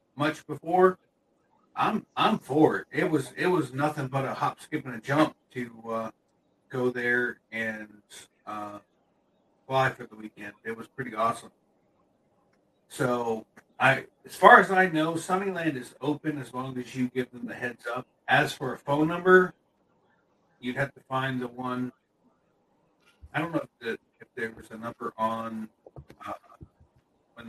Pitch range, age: 120-150 Hz, 50-69